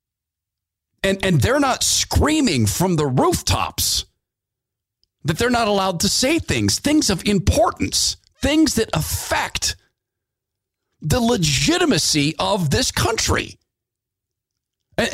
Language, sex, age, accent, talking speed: English, male, 50-69, American, 105 wpm